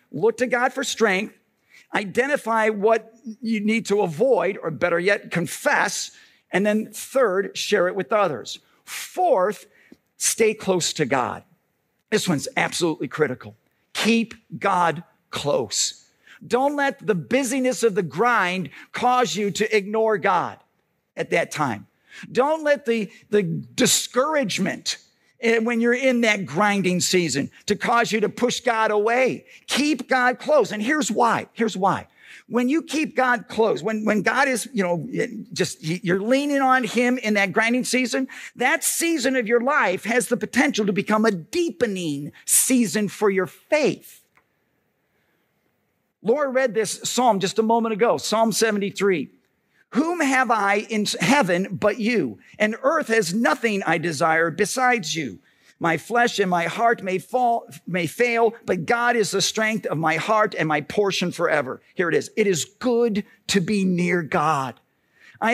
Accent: American